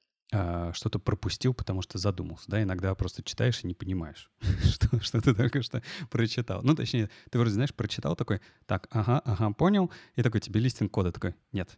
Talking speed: 190 wpm